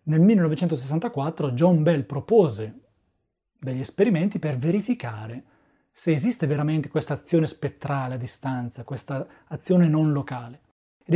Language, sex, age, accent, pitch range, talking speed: Italian, male, 30-49, native, 135-190 Hz, 120 wpm